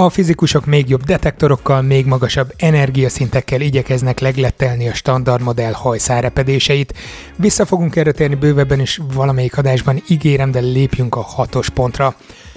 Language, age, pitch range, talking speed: Hungarian, 30-49, 130-155 Hz, 135 wpm